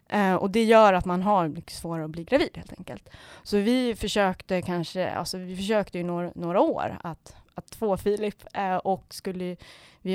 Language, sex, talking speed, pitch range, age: Swedish, female, 175 wpm, 180-210 Hz, 20-39